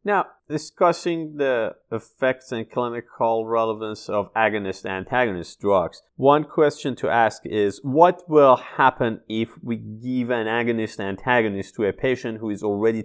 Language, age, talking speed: English, 30-49, 135 wpm